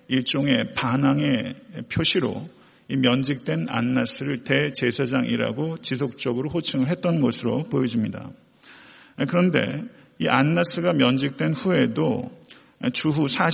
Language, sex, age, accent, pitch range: Korean, male, 50-69, native, 130-155 Hz